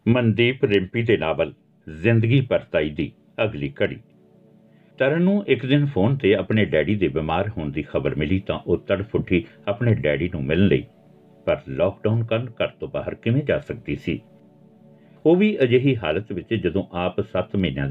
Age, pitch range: 60-79, 90-140 Hz